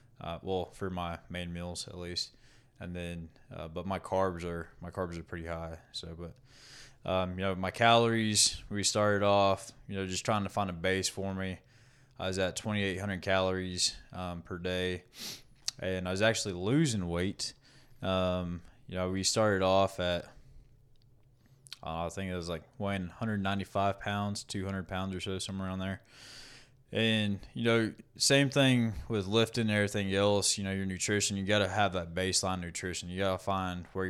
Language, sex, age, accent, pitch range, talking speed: English, male, 20-39, American, 90-110 Hz, 180 wpm